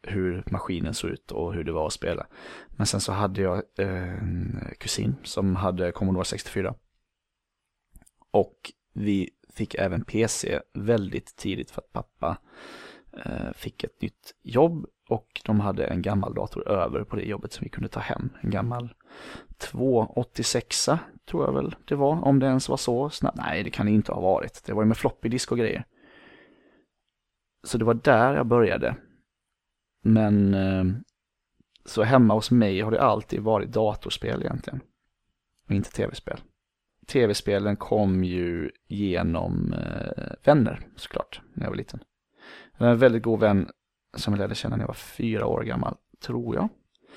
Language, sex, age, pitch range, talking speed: Swedish, male, 20-39, 95-115 Hz, 160 wpm